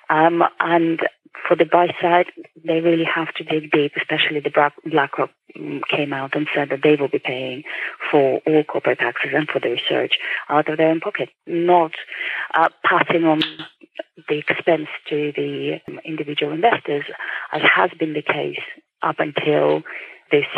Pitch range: 155-175 Hz